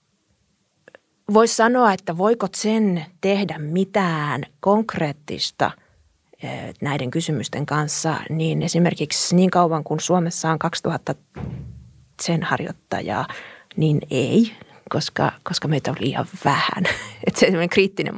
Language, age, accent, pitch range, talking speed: Finnish, 30-49, native, 150-185 Hz, 100 wpm